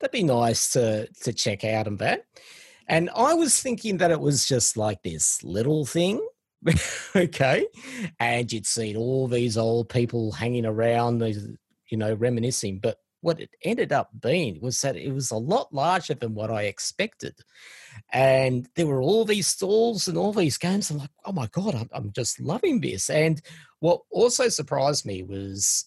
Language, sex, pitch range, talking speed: English, male, 110-155 Hz, 175 wpm